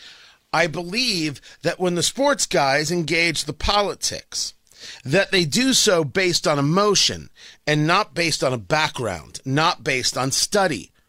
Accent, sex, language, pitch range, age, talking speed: American, male, English, 130-190 Hz, 40-59, 145 wpm